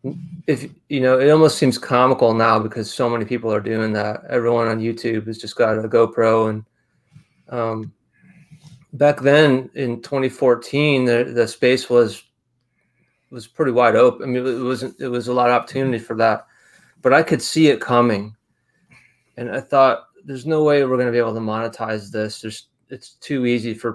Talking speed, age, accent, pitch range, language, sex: 185 wpm, 30-49, American, 115-130 Hz, English, male